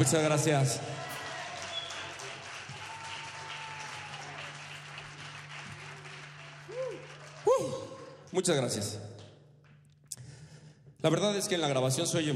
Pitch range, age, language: 120-150 Hz, 40-59, Spanish